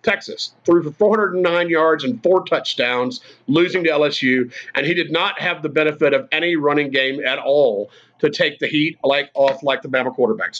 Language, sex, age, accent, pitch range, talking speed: English, male, 50-69, American, 150-205 Hz, 190 wpm